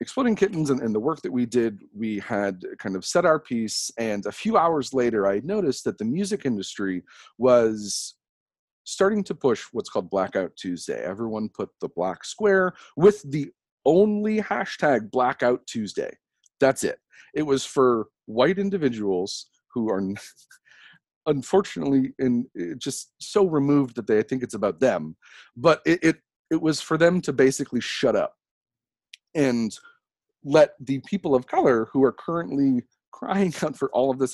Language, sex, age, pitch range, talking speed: English, male, 40-59, 120-175 Hz, 165 wpm